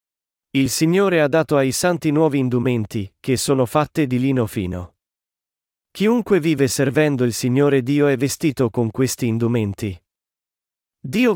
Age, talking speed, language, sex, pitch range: 40-59, 135 wpm, Italian, male, 125-155 Hz